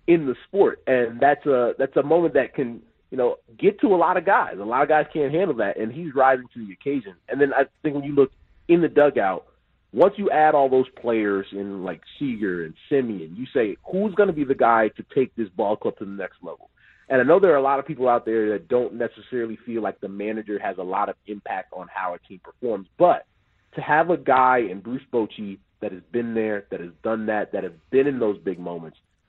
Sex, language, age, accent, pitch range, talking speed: male, English, 30-49, American, 110-155 Hz, 250 wpm